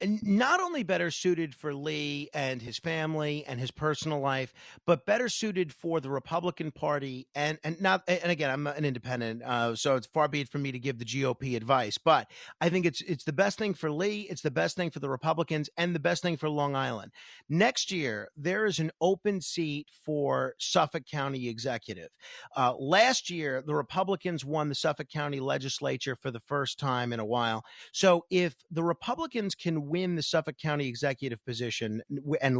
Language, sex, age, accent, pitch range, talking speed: English, male, 40-59, American, 140-185 Hz, 195 wpm